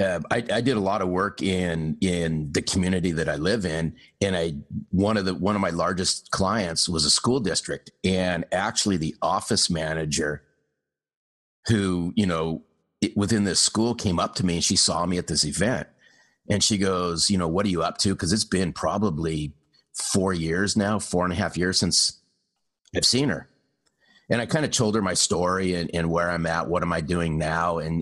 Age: 40-59